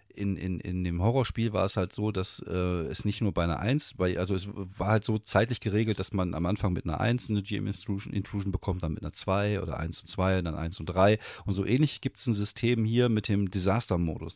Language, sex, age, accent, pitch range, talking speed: German, male, 40-59, German, 90-110 Hz, 250 wpm